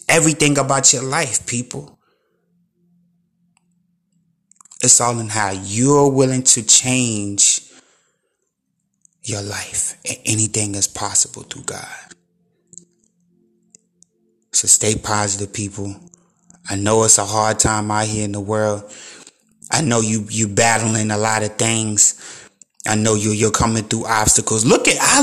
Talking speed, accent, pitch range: 130 wpm, American, 110-170 Hz